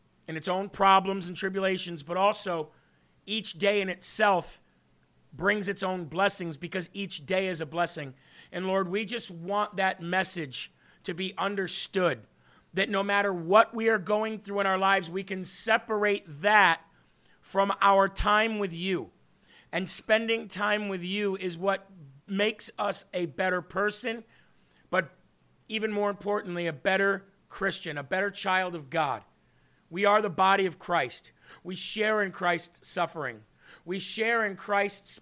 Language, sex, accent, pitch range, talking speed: English, male, American, 175-210 Hz, 155 wpm